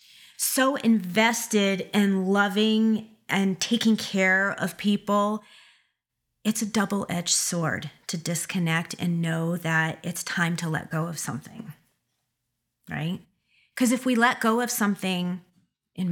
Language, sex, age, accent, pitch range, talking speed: English, female, 30-49, American, 165-205 Hz, 125 wpm